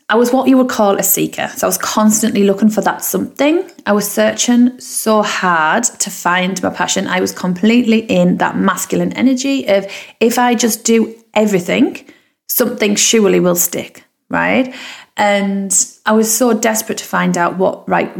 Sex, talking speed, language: female, 175 wpm, English